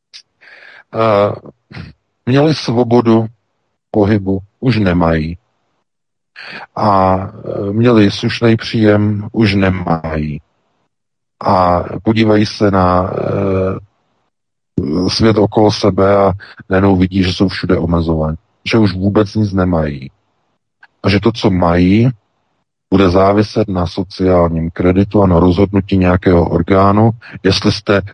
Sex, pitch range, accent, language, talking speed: male, 85-105 Hz, native, Czech, 105 wpm